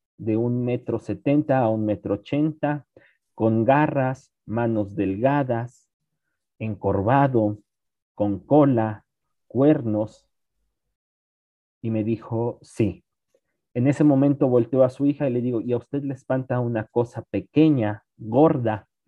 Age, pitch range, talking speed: 40-59, 110-135 Hz, 125 wpm